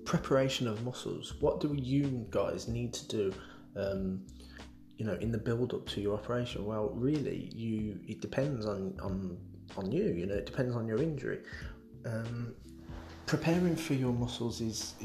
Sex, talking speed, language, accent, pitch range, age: male, 165 wpm, English, British, 95-120 Hz, 20-39